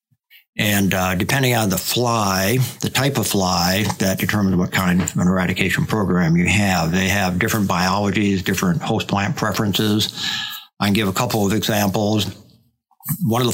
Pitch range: 100-120 Hz